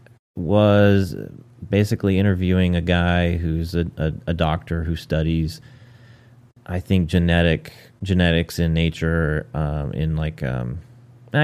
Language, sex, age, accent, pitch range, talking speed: English, male, 30-49, American, 90-120 Hz, 115 wpm